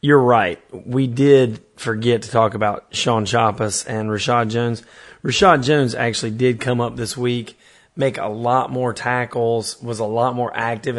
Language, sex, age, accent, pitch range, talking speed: English, male, 30-49, American, 115-140 Hz, 170 wpm